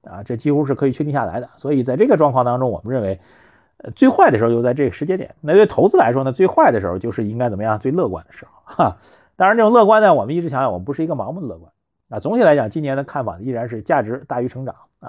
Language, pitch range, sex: Chinese, 125-180 Hz, male